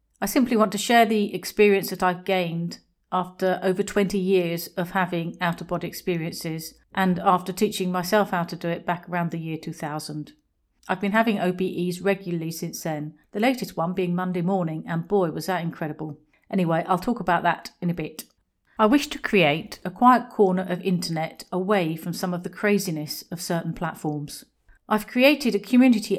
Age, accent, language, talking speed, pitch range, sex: 40-59, British, English, 180 wpm, 175-210 Hz, female